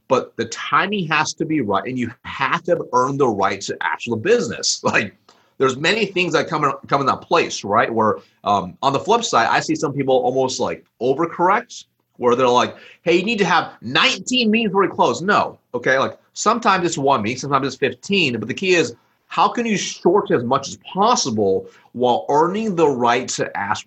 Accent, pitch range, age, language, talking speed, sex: American, 125-185 Hz, 30-49, English, 210 wpm, male